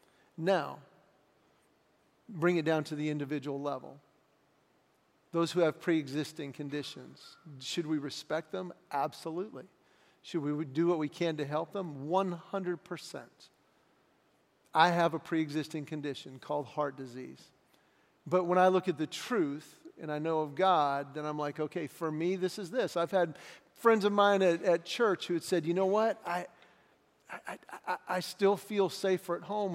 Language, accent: English, American